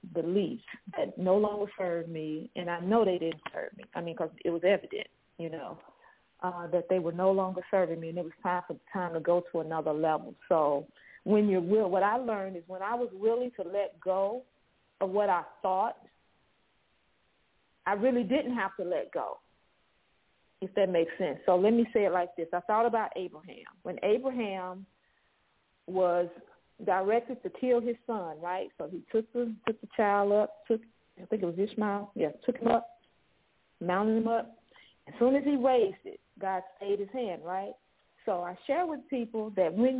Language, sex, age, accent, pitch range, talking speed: English, female, 40-59, American, 180-240 Hz, 195 wpm